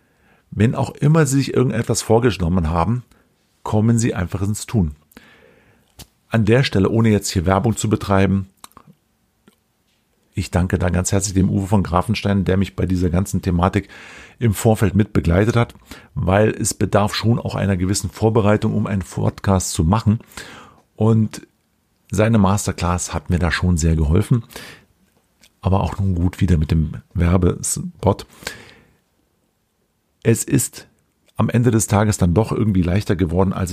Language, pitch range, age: German, 95-115 Hz, 50-69